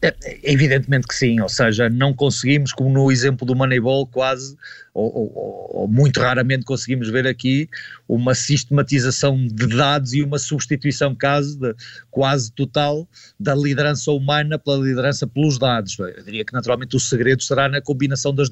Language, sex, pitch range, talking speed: Portuguese, male, 130-180 Hz, 160 wpm